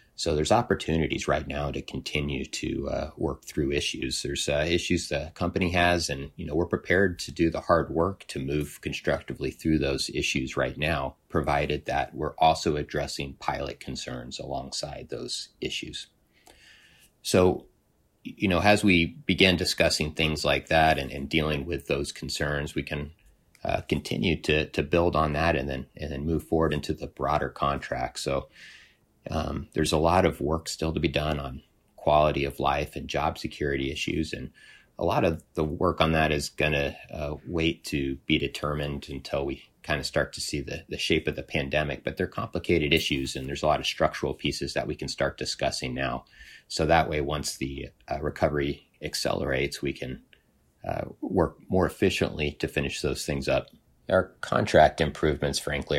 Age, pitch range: 30-49, 70-80 Hz